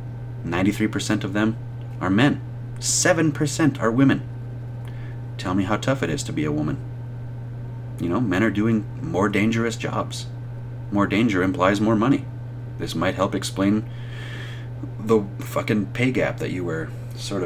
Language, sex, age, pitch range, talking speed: English, male, 30-49, 120-125 Hz, 145 wpm